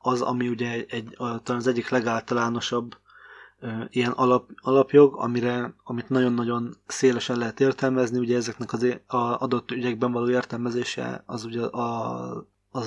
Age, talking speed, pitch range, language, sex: 20-39, 140 wpm, 120-130 Hz, Hungarian, male